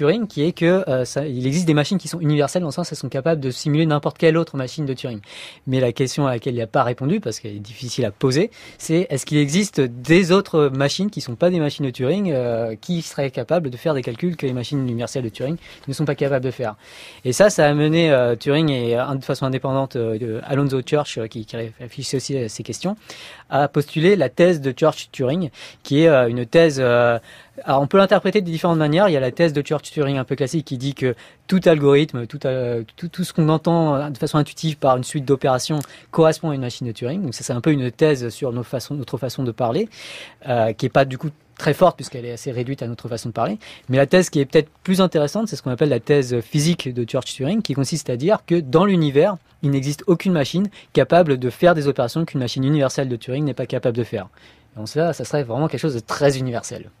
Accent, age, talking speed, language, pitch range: French, 30-49, 245 wpm, French, 125-160 Hz